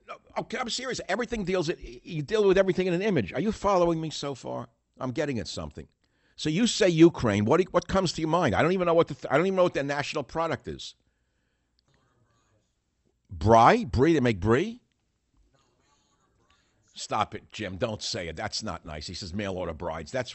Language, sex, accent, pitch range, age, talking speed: English, male, American, 95-145 Hz, 60-79, 205 wpm